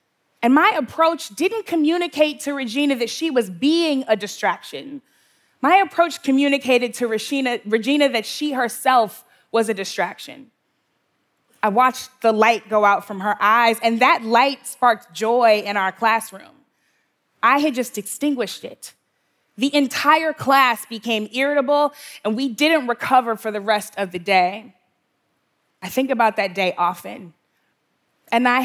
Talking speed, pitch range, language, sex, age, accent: 145 wpm, 220-280 Hz, English, female, 20-39, American